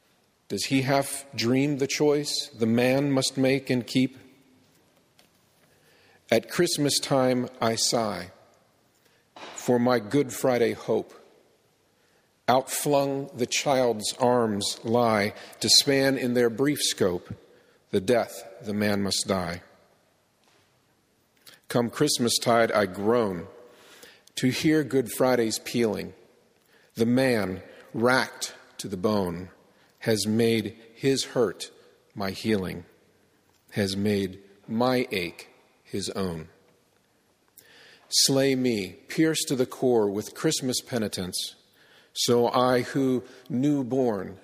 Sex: male